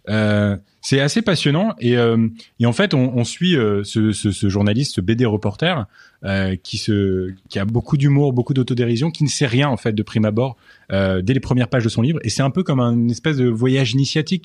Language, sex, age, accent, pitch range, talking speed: French, male, 20-39, French, 105-135 Hz, 230 wpm